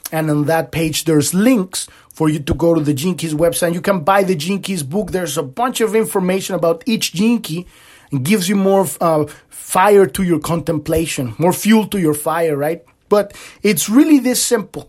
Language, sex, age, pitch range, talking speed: English, male, 30-49, 155-220 Hz, 195 wpm